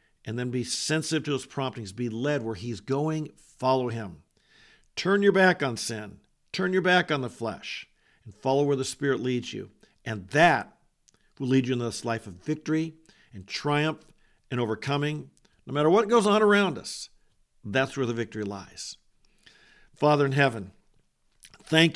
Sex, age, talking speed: male, 50-69, 170 wpm